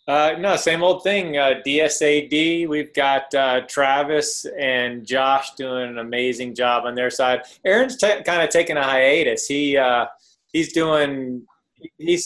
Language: English